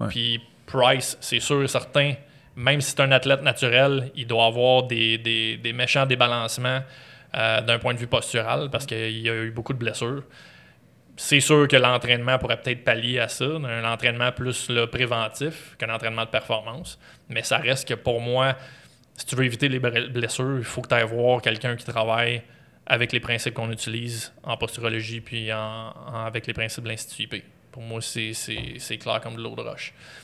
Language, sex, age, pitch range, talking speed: French, male, 20-39, 115-130 Hz, 200 wpm